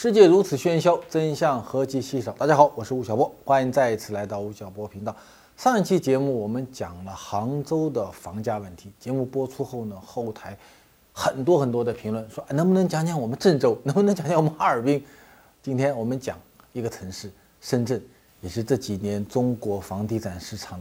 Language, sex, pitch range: Chinese, male, 105-150 Hz